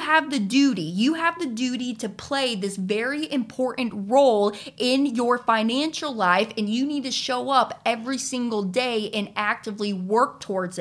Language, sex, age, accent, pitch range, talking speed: English, female, 20-39, American, 235-315 Hz, 165 wpm